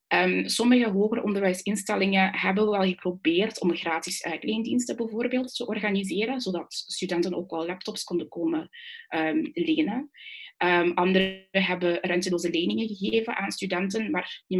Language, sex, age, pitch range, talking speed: Dutch, female, 20-39, 170-205 Hz, 135 wpm